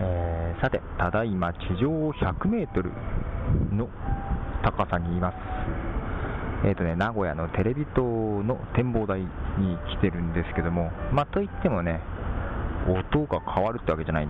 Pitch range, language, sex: 80-110 Hz, Japanese, male